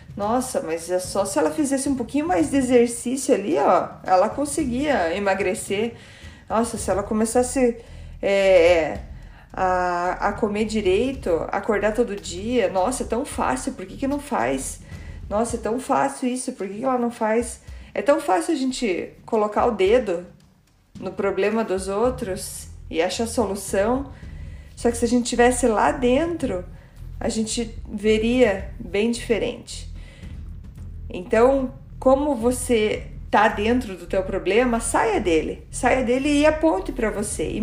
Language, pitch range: Portuguese, 195-255 Hz